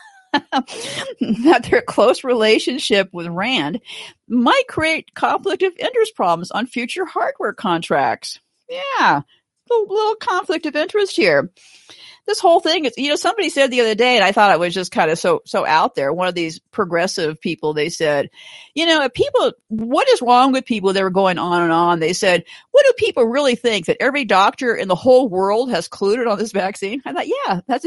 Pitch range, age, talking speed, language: 200-320 Hz, 50-69, 195 wpm, English